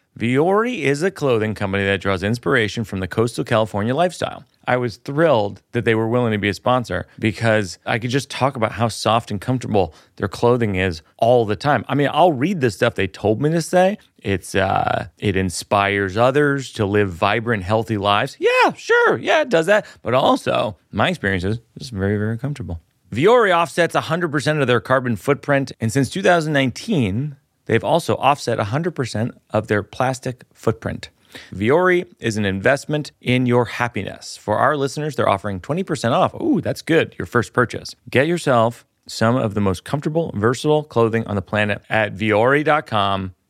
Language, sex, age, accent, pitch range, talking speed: English, male, 30-49, American, 105-150 Hz, 175 wpm